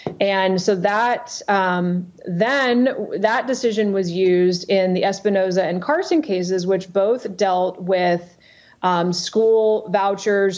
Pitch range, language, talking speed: 190-215 Hz, English, 125 wpm